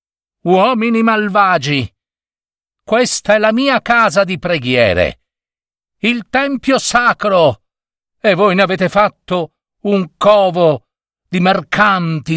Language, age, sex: Italian, 60-79, male